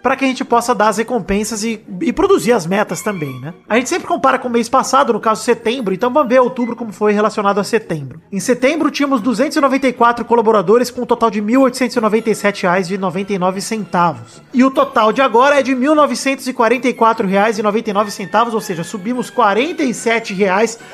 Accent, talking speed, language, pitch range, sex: Brazilian, 170 wpm, Portuguese, 200-250 Hz, male